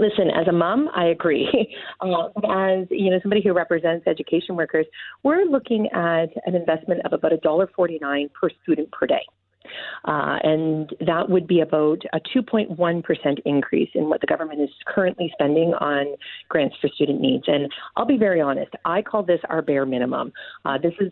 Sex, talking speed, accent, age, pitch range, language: female, 175 wpm, American, 40-59, 155-205 Hz, English